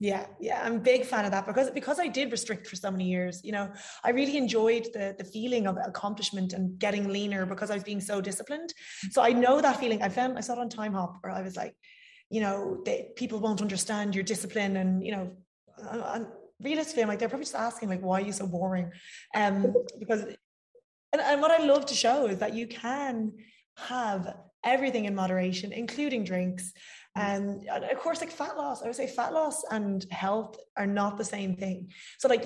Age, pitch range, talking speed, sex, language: 20-39, 195-250 Hz, 220 wpm, female, English